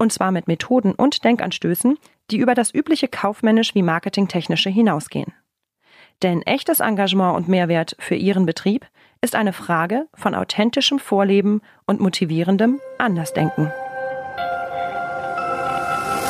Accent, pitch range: German, 170-225 Hz